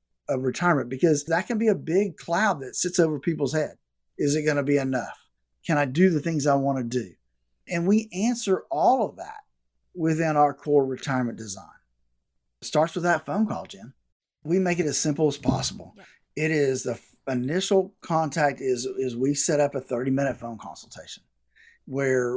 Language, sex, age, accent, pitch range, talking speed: English, male, 50-69, American, 130-180 Hz, 180 wpm